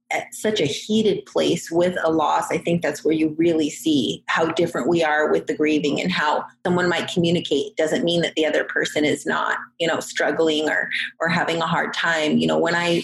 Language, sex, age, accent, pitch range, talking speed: English, female, 30-49, American, 160-200 Hz, 220 wpm